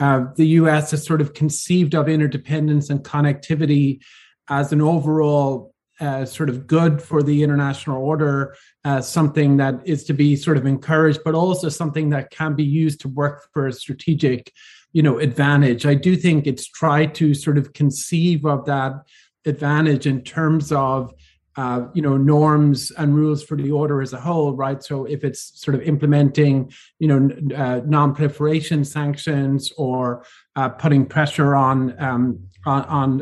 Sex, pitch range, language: male, 135-155 Hz, English